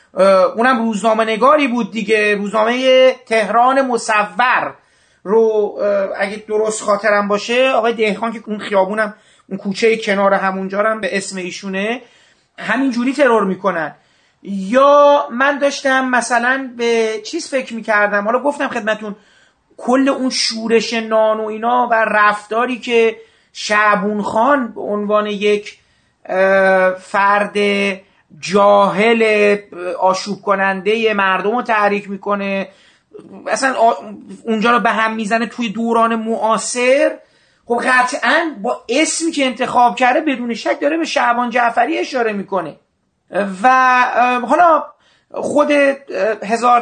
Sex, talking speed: male, 115 wpm